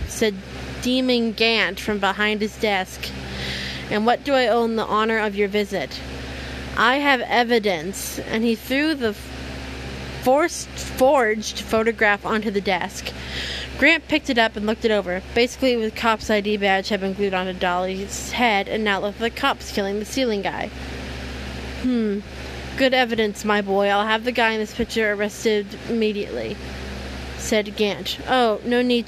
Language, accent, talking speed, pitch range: English, American, 160 wpm, 190-245 Hz